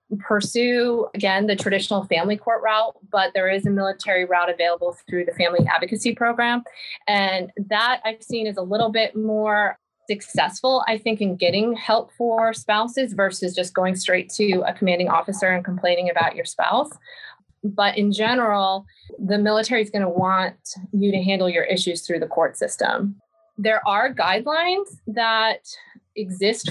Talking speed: 160 wpm